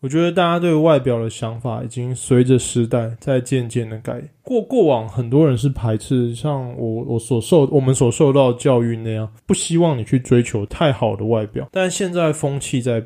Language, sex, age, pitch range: Chinese, male, 20-39, 115-150 Hz